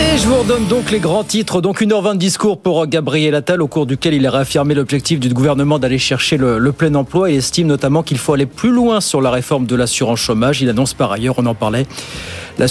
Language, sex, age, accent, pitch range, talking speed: French, male, 40-59, French, 140-180 Hz, 245 wpm